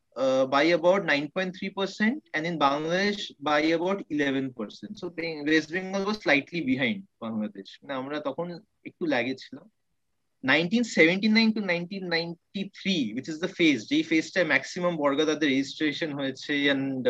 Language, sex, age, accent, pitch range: Bengali, male, 30-49, native, 150-195 Hz